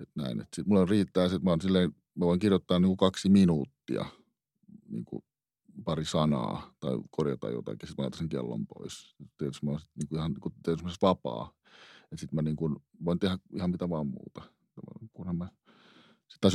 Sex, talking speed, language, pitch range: male, 170 wpm, Finnish, 80-100 Hz